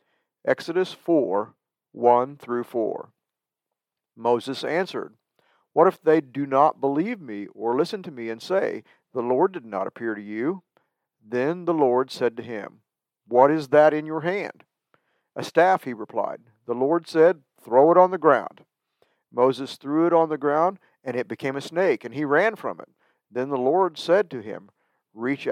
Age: 50-69